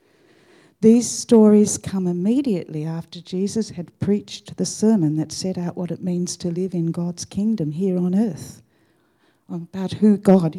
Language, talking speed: English, 155 wpm